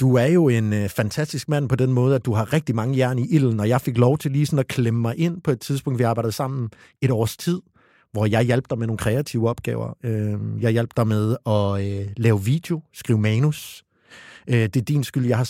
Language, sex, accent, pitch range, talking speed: Danish, male, native, 115-140 Hz, 250 wpm